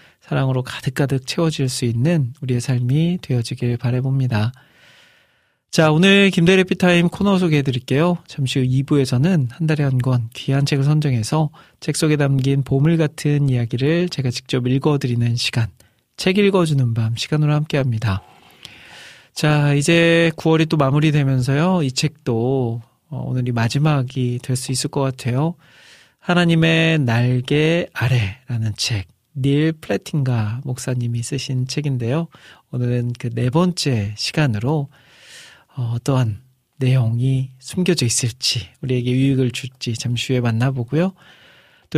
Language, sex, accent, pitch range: Korean, male, native, 125-155 Hz